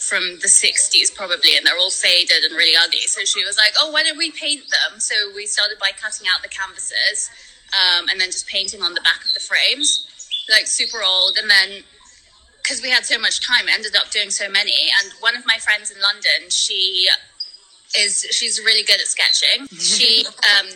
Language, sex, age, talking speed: English, female, 20-39, 210 wpm